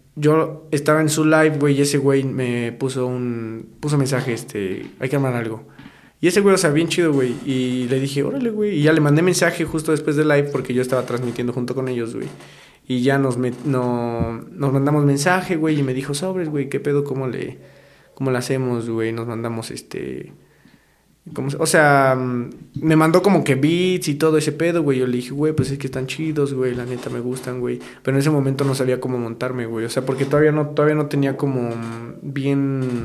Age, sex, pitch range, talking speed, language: 20-39, male, 125-150 Hz, 220 wpm, Spanish